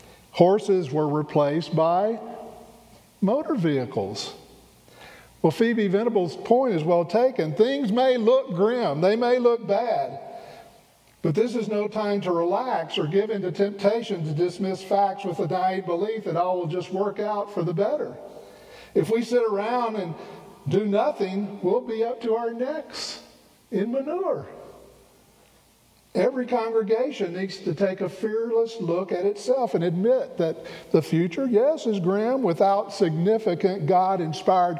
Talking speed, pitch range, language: 145 wpm, 165-225 Hz, English